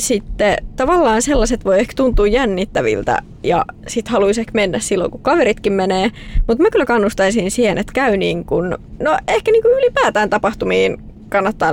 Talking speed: 160 wpm